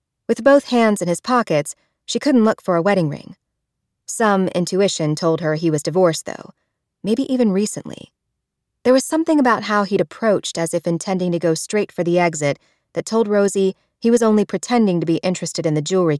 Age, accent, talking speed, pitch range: 30-49, American, 195 wpm, 160-215 Hz